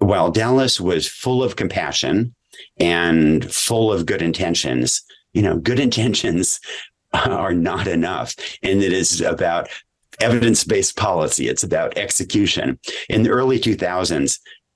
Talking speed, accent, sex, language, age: 125 wpm, American, male, English, 50-69